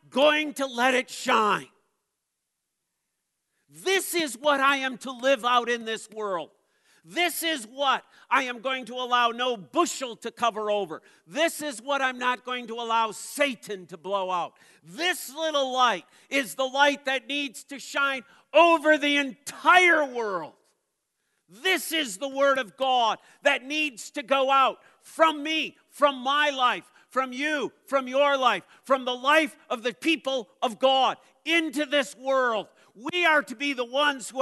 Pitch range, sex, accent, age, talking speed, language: 225-290 Hz, male, American, 50-69, 165 wpm, English